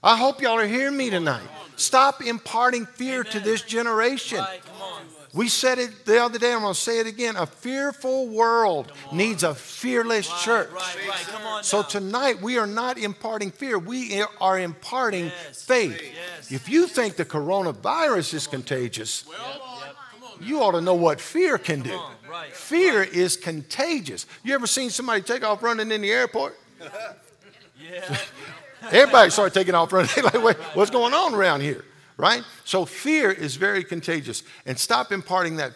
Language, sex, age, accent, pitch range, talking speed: English, male, 50-69, American, 160-235 Hz, 160 wpm